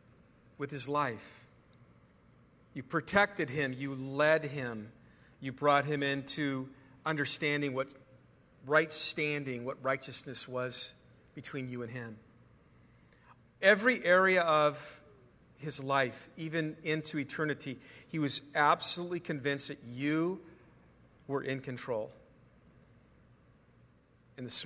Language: English